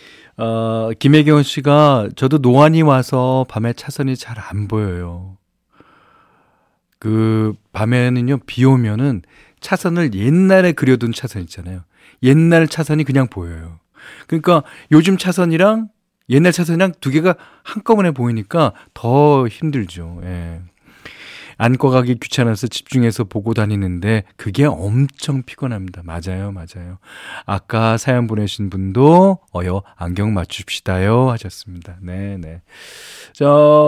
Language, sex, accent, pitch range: Korean, male, native, 105-175 Hz